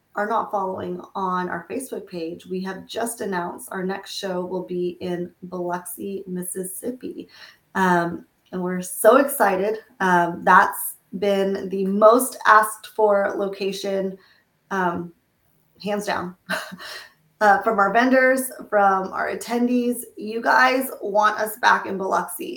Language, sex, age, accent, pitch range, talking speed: English, female, 20-39, American, 185-220 Hz, 130 wpm